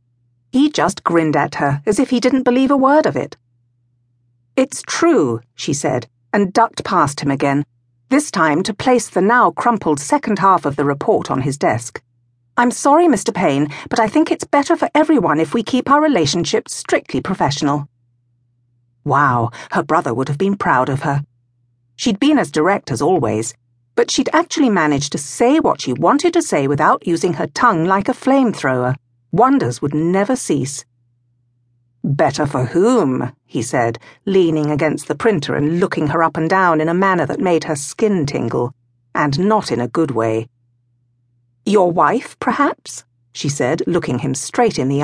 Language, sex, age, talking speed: English, female, 50-69, 175 wpm